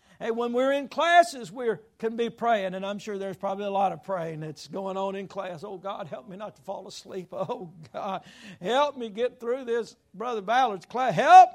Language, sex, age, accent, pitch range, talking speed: English, male, 60-79, American, 195-245 Hz, 220 wpm